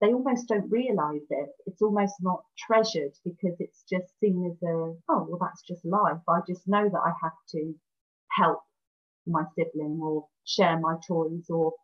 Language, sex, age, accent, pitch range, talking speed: English, female, 30-49, British, 165-200 Hz, 175 wpm